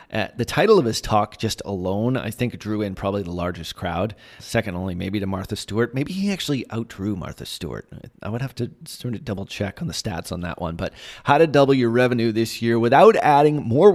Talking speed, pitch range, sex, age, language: 225 wpm, 105-135 Hz, male, 30-49, English